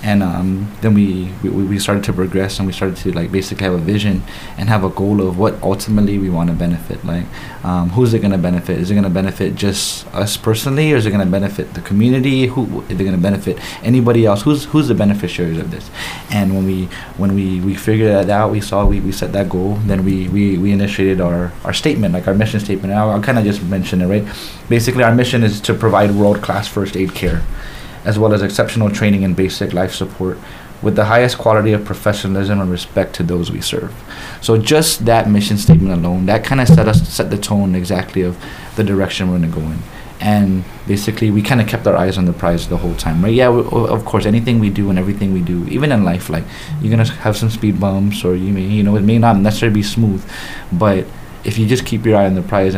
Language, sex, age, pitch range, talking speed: English, male, 20-39, 95-110 Hz, 245 wpm